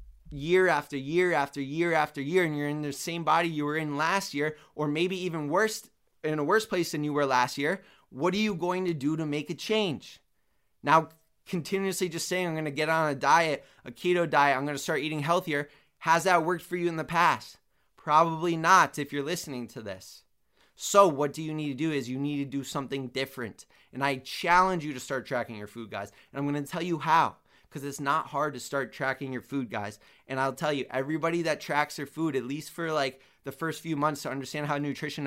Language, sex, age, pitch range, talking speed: English, male, 20-39, 140-165 Hz, 235 wpm